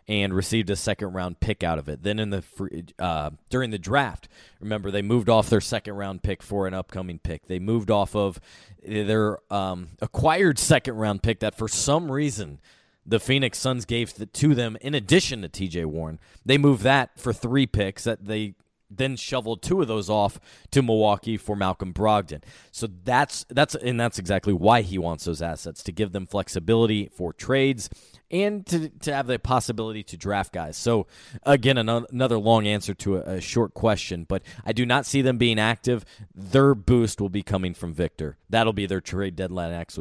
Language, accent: English, American